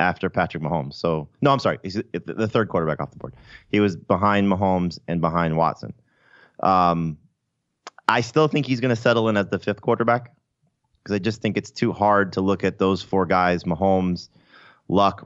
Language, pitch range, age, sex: English, 85-105 Hz, 30-49, male